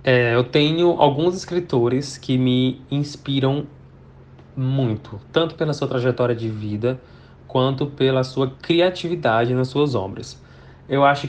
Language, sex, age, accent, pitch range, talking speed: Portuguese, male, 20-39, Brazilian, 120-145 Hz, 130 wpm